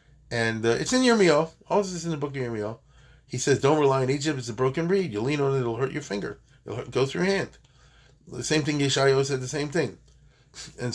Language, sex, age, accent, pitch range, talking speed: English, male, 40-59, American, 120-150 Hz, 250 wpm